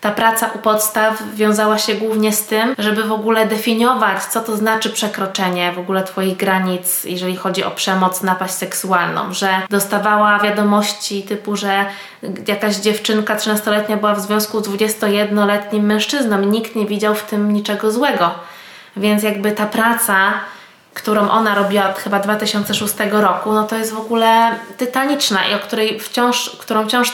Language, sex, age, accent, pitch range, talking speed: Polish, female, 20-39, native, 200-215 Hz, 155 wpm